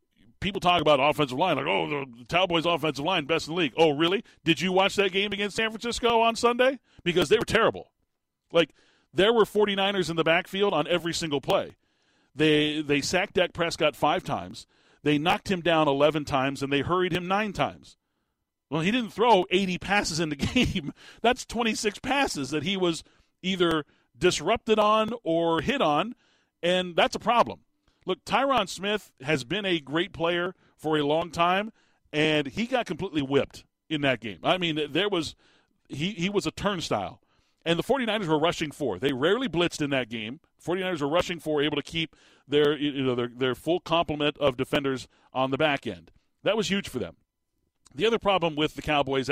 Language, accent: English, American